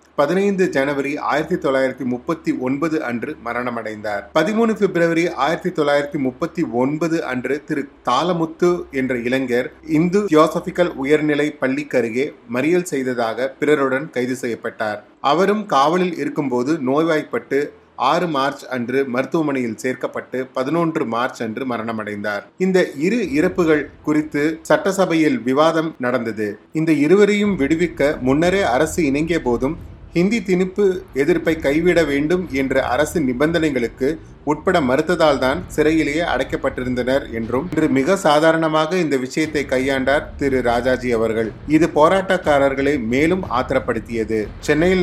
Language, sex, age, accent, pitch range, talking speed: Tamil, male, 30-49, native, 130-165 Hz, 105 wpm